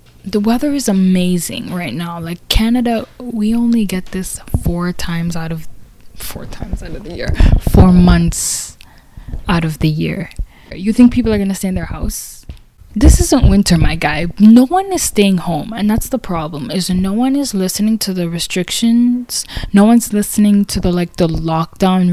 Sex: female